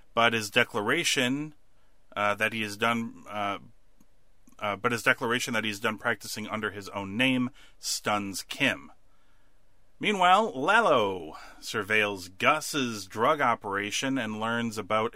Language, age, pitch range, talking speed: English, 30-49, 95-115 Hz, 125 wpm